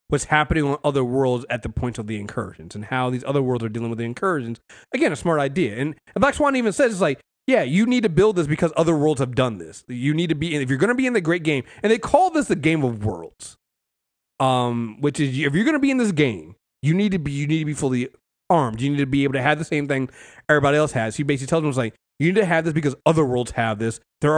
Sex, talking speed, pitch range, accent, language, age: male, 290 wpm, 125-160 Hz, American, English, 30-49